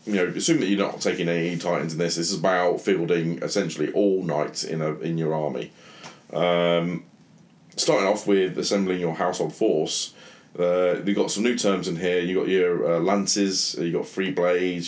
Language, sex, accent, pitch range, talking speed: English, male, British, 85-100 Hz, 195 wpm